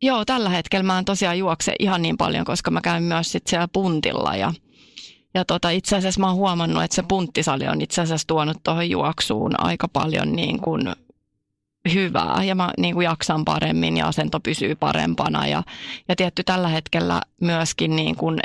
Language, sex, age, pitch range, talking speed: Finnish, female, 30-49, 145-185 Hz, 185 wpm